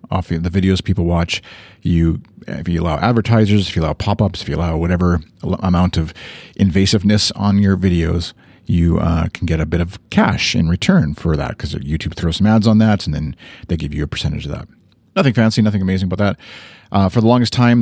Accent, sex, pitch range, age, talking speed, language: American, male, 85-110 Hz, 40-59, 210 wpm, English